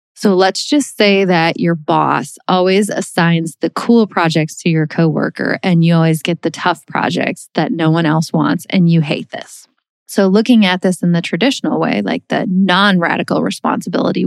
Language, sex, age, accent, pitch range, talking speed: English, female, 20-39, American, 165-210 Hz, 185 wpm